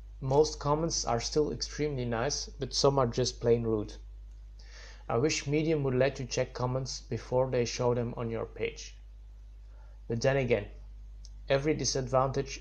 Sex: male